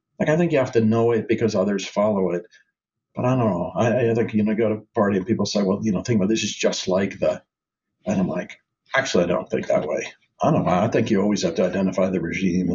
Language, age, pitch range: English, 50-69, 105-145 Hz